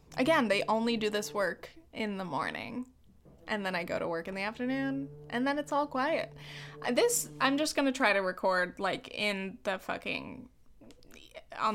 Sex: female